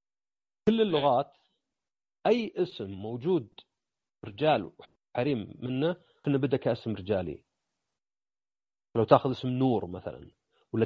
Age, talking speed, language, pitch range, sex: 40-59, 100 wpm, Arabic, 115-165 Hz, male